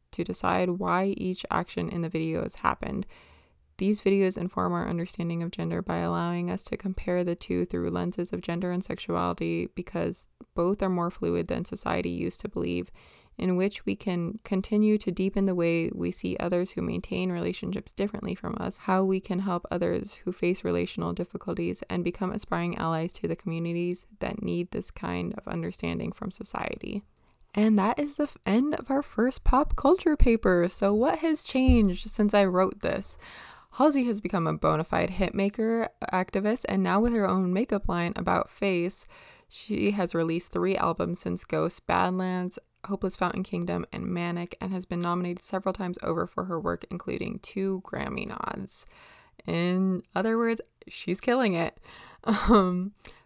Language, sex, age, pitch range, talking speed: English, female, 20-39, 160-205 Hz, 170 wpm